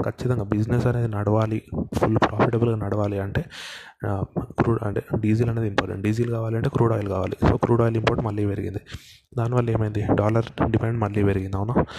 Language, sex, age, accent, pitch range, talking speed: Telugu, male, 20-39, native, 105-115 Hz, 150 wpm